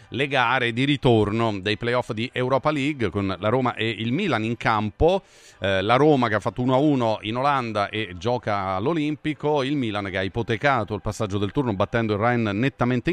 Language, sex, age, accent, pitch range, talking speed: Italian, male, 40-59, native, 110-145 Hz, 190 wpm